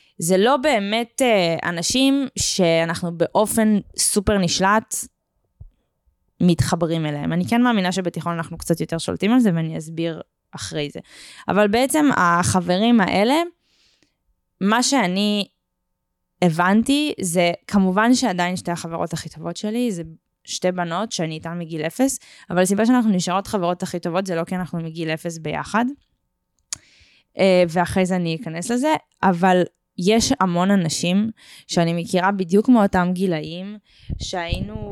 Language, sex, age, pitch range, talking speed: Hebrew, female, 20-39, 170-210 Hz, 130 wpm